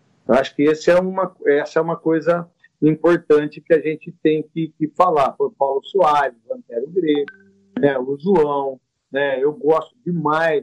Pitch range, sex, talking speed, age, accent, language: 160-255 Hz, male, 170 wpm, 50-69, Brazilian, Portuguese